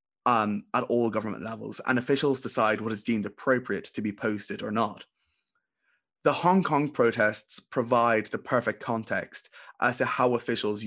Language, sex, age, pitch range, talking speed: English, male, 20-39, 105-130 Hz, 160 wpm